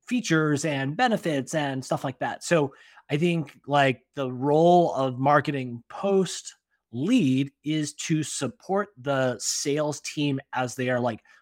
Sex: male